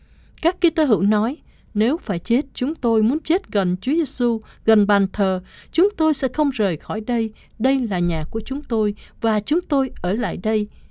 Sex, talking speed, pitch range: female, 200 wpm, 190-270 Hz